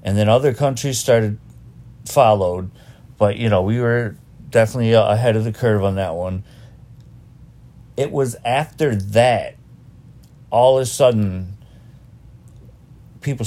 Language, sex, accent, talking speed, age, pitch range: English, male, American, 125 wpm, 40-59, 105-120 Hz